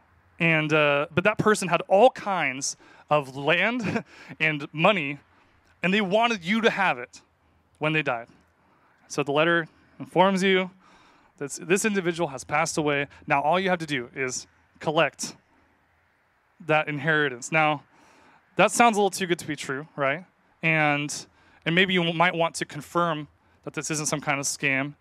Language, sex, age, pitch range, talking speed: English, male, 20-39, 145-185 Hz, 165 wpm